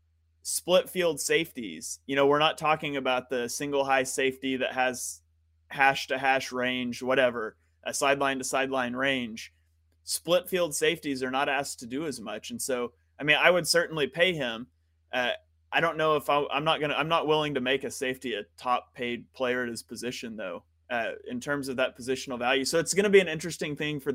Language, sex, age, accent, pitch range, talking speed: English, male, 30-49, American, 120-150 Hz, 210 wpm